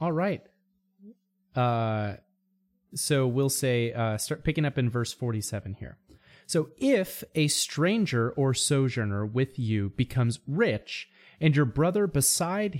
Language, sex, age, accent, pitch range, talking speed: English, male, 30-49, American, 115-165 Hz, 130 wpm